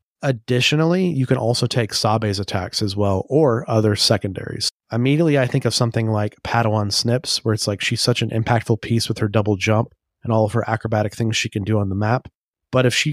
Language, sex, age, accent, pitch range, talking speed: English, male, 30-49, American, 105-125 Hz, 215 wpm